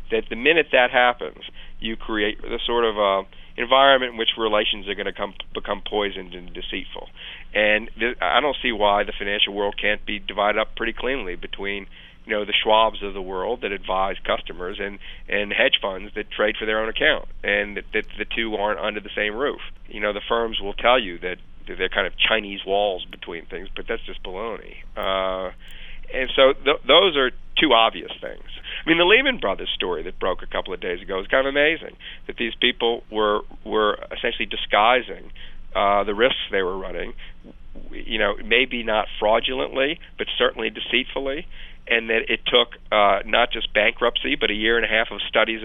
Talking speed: 195 wpm